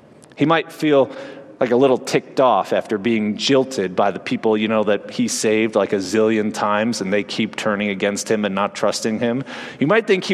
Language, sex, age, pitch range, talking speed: English, male, 40-59, 115-170 Hz, 215 wpm